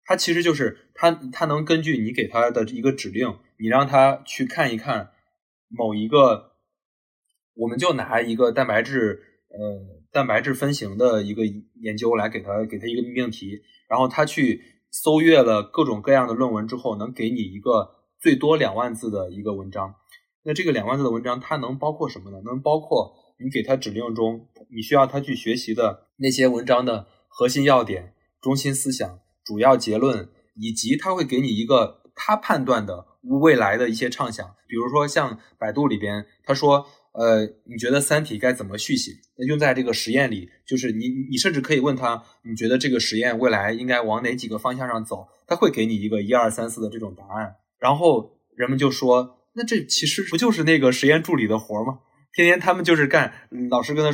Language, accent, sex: Chinese, native, male